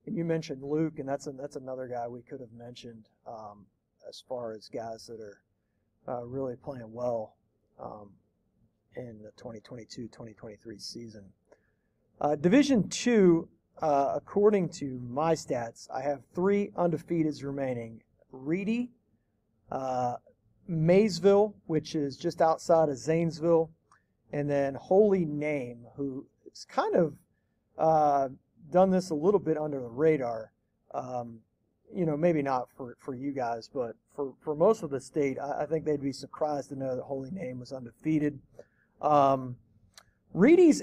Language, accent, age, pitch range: English, American, 40-59, 125-175 Hz